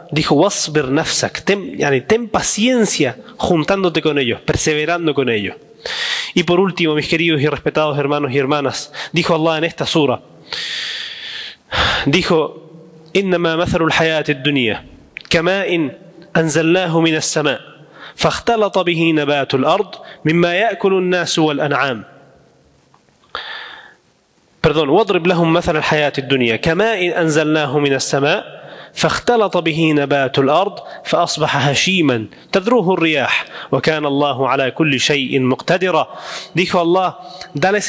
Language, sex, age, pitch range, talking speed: Spanish, male, 30-49, 155-195 Hz, 80 wpm